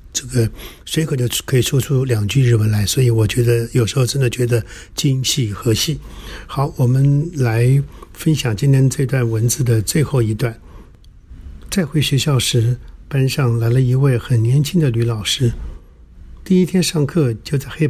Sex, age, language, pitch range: male, 60-79, Chinese, 110-150 Hz